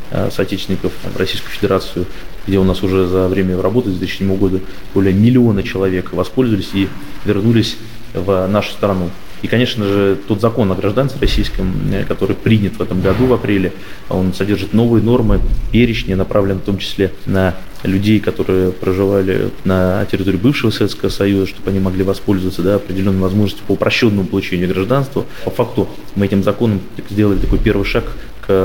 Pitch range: 95-115 Hz